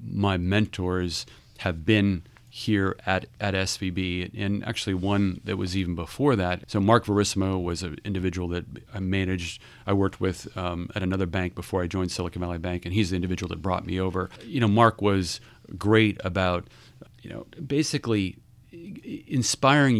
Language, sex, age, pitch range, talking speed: English, male, 40-59, 95-120 Hz, 170 wpm